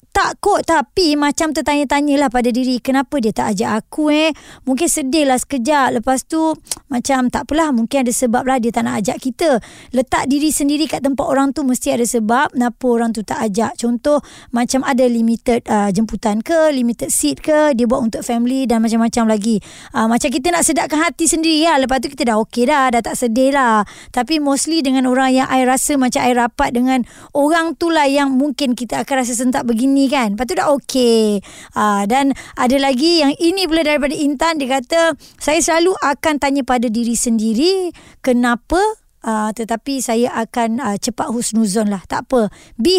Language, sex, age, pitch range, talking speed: Malay, male, 20-39, 245-310 Hz, 190 wpm